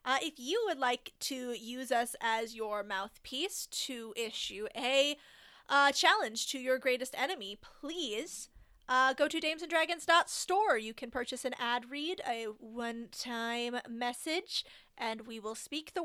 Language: English